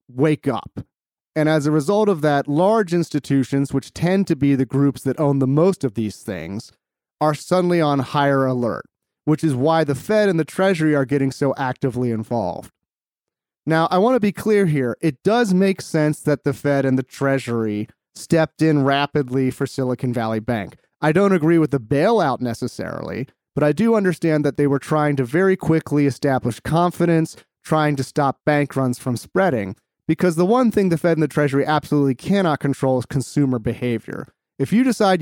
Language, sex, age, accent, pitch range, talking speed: English, male, 30-49, American, 135-180 Hz, 185 wpm